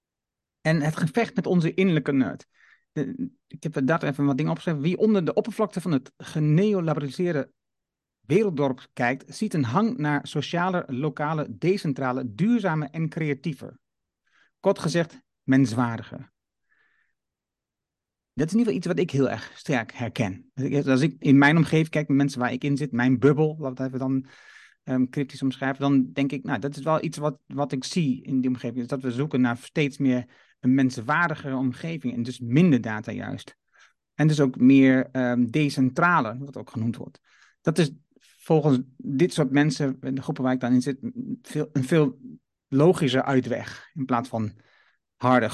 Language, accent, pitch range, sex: Dutch, Dutch, 130-165 Hz, male